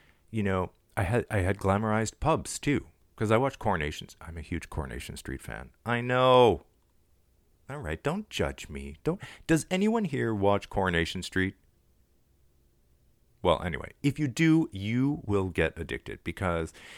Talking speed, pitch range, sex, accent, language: 150 wpm, 85-115 Hz, male, American, English